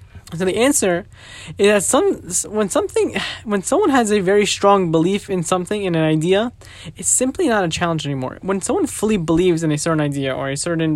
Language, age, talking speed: English, 10-29, 205 wpm